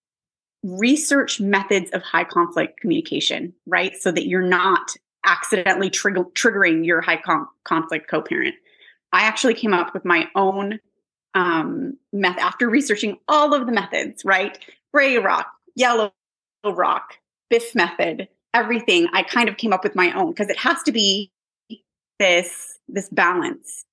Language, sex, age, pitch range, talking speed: English, female, 20-39, 190-280 Hz, 140 wpm